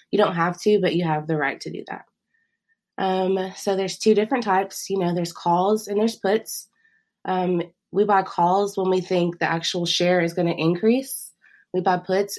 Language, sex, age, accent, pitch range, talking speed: English, female, 20-39, American, 170-195 Hz, 205 wpm